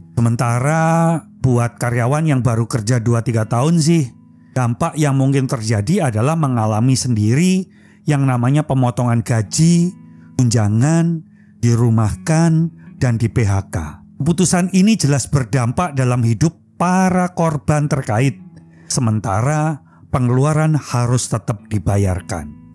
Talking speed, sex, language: 105 wpm, male, Indonesian